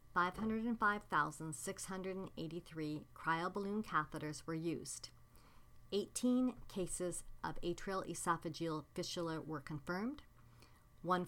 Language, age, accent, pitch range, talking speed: English, 50-69, American, 155-190 Hz, 120 wpm